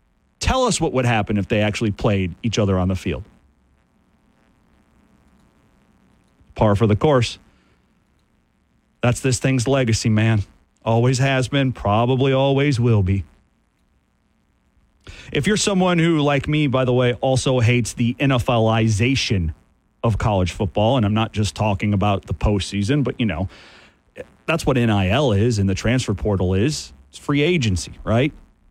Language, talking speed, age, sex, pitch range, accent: English, 150 wpm, 40-59, male, 95-135 Hz, American